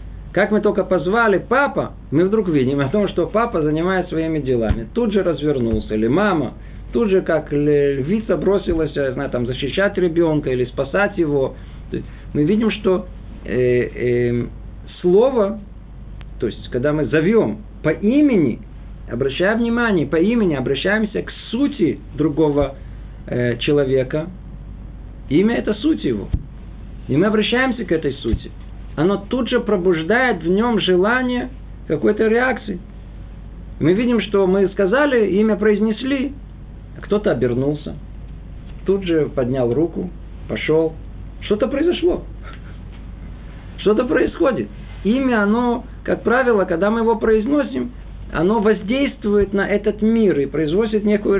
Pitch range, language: 140-215 Hz, Russian